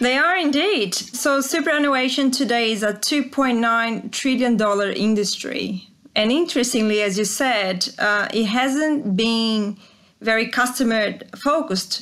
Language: English